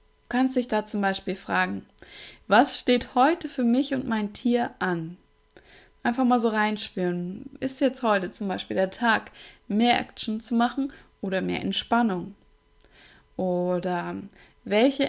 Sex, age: female, 20-39